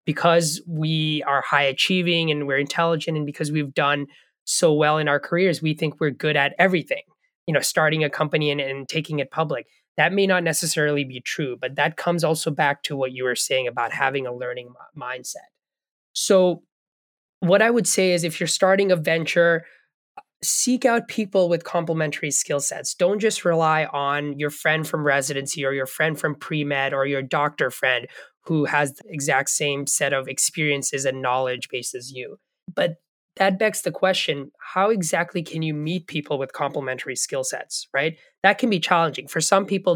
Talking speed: 190 wpm